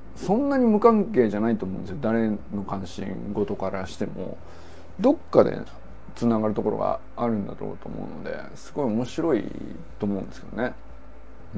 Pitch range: 100-155 Hz